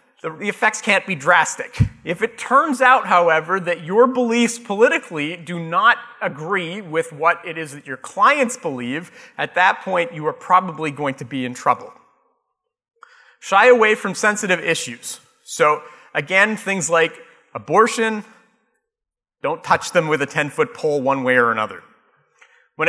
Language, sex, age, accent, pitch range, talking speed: English, male, 30-49, American, 160-225 Hz, 150 wpm